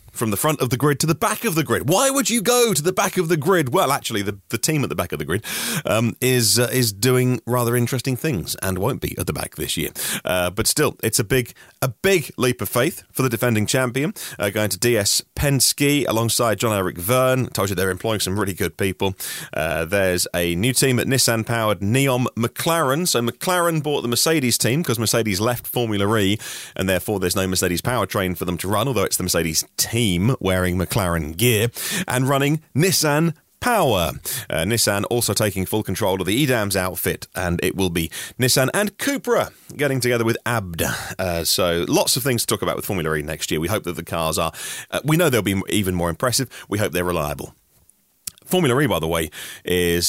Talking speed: 220 wpm